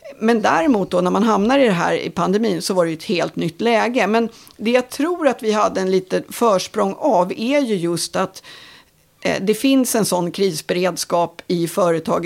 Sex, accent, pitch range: female, native, 180-230 Hz